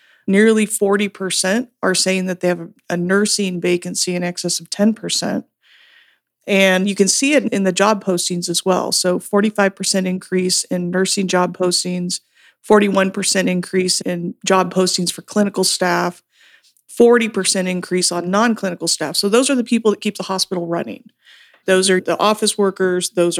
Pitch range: 180-210 Hz